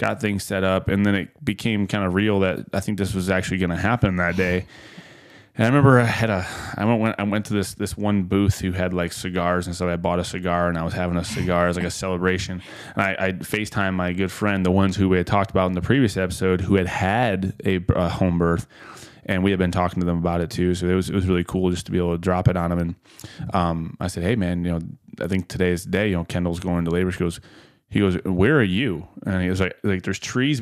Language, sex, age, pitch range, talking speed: English, male, 20-39, 90-105 Hz, 275 wpm